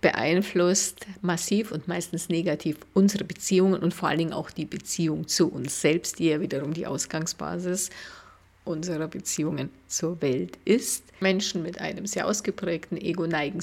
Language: German